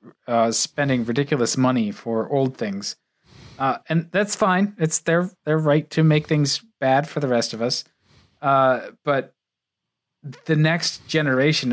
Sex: male